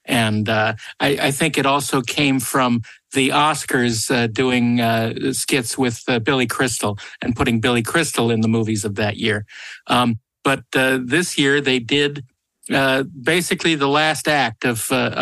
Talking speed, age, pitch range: 170 wpm, 50-69, 120-145 Hz